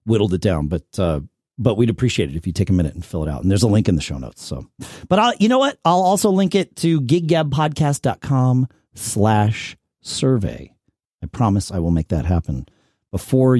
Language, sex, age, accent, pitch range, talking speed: English, male, 40-59, American, 110-170 Hz, 220 wpm